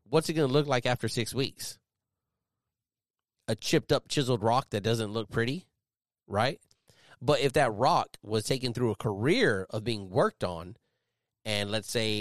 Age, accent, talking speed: 30-49, American, 170 wpm